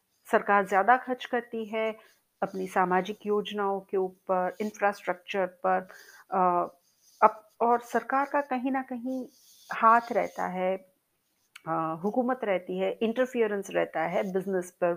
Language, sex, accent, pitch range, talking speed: Hindi, female, native, 195-245 Hz, 120 wpm